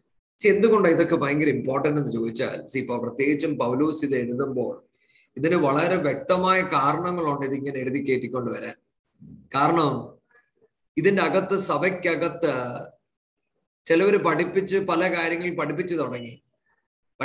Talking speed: 105 wpm